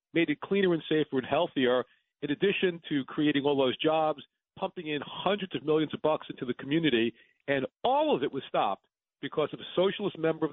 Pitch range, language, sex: 130-165 Hz, English, male